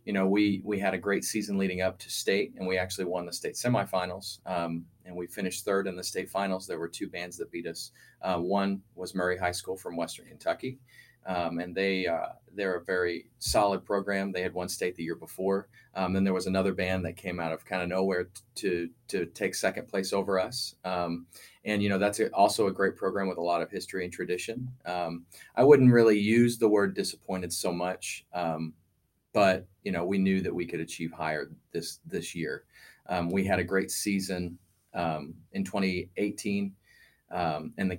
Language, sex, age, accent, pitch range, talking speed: English, male, 30-49, American, 85-100 Hz, 205 wpm